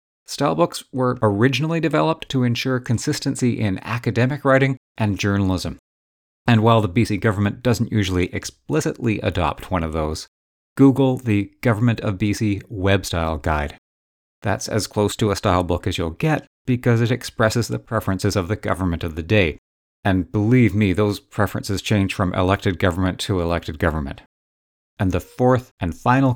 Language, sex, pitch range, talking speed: English, male, 95-125 Hz, 160 wpm